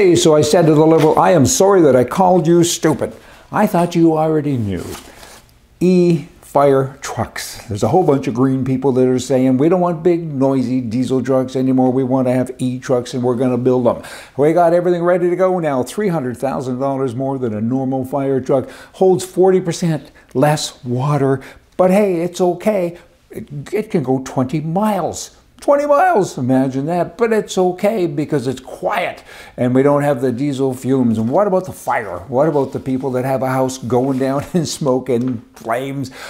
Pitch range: 125-160 Hz